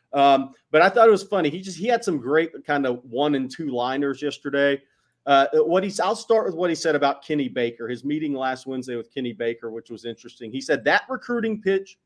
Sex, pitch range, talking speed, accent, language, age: male, 145-220 Hz, 235 wpm, American, English, 40-59